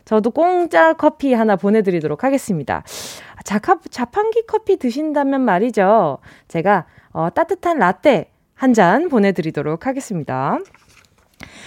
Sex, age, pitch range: female, 20-39, 215-310 Hz